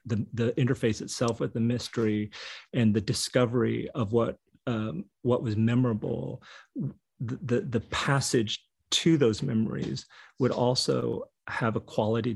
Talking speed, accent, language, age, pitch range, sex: 135 wpm, American, English, 30-49, 105-120 Hz, male